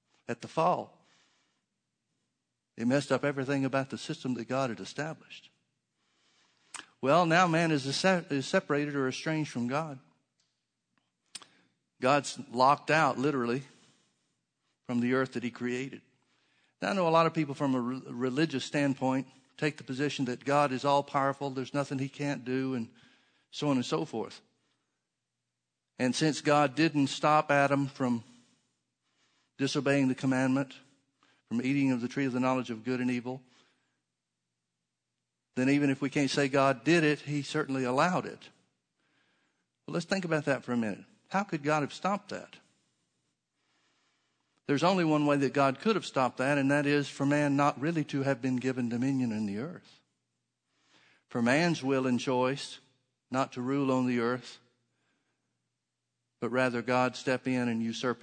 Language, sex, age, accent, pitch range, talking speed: English, male, 50-69, American, 125-145 Hz, 160 wpm